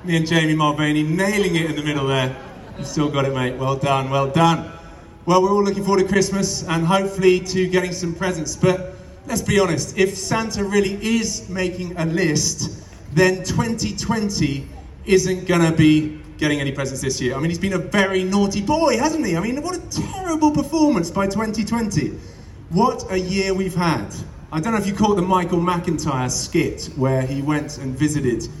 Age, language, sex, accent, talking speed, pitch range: 30-49, English, male, British, 190 wpm, 140-185 Hz